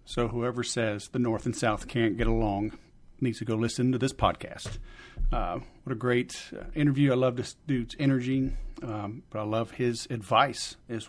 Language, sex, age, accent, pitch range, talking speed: English, male, 40-59, American, 115-130 Hz, 185 wpm